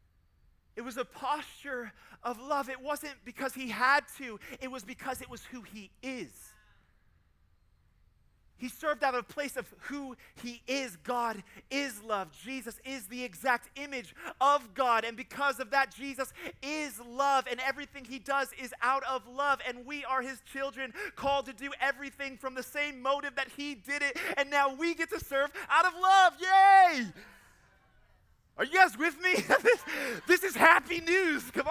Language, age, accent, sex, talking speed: English, 30-49, American, male, 180 wpm